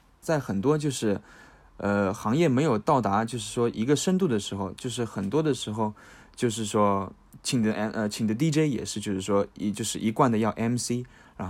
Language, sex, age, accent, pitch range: Chinese, male, 20-39, native, 100-120 Hz